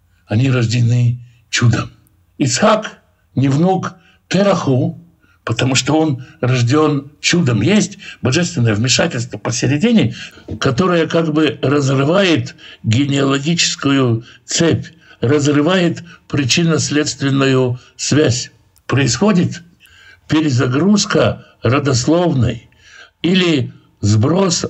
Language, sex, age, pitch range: Russian, male, 60-79, 120-155 Hz